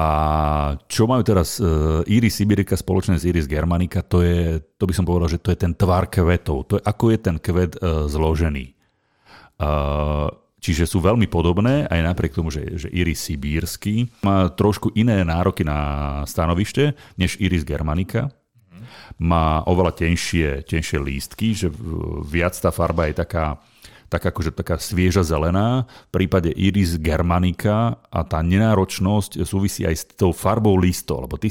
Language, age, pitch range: Slovak, 40-59, 80-100 Hz